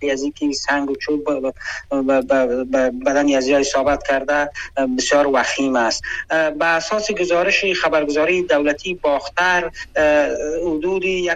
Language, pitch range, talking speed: Persian, 140-165 Hz, 100 wpm